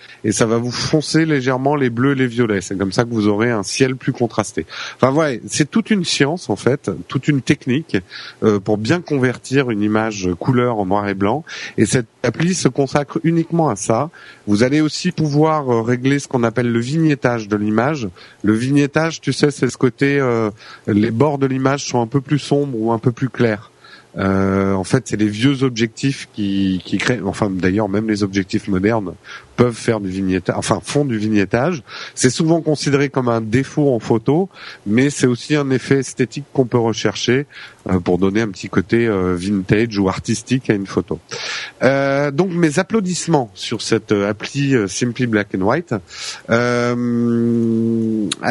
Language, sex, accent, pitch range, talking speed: French, male, French, 110-140 Hz, 190 wpm